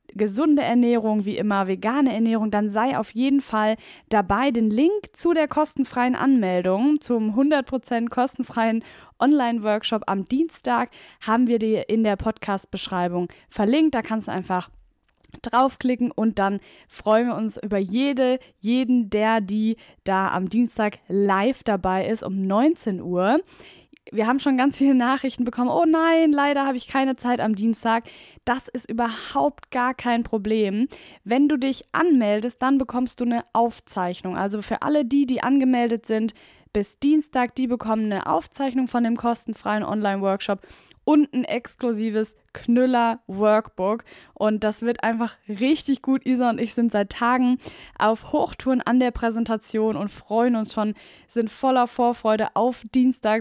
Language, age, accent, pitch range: German, 10-29, German, 215-260 Hz